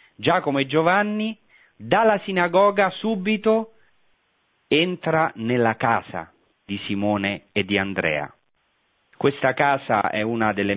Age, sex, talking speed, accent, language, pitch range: 30-49, male, 105 wpm, native, Italian, 95-115 Hz